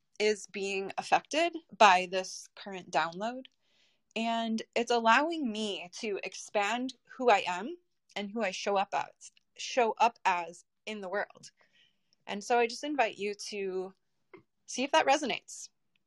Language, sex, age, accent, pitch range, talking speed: English, female, 20-39, American, 190-235 Hz, 140 wpm